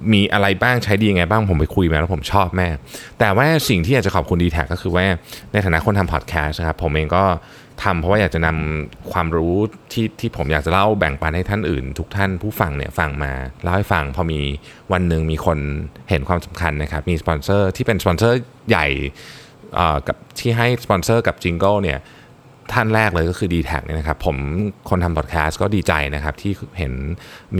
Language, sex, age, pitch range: Thai, male, 20-39, 80-105 Hz